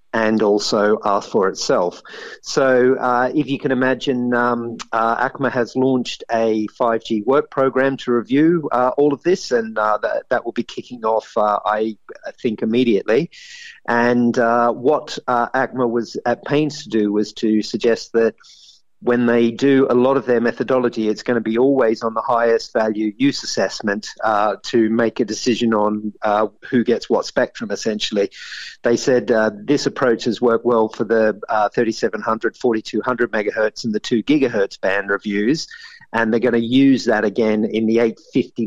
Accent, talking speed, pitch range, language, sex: Australian, 175 wpm, 110-125 Hz, English, male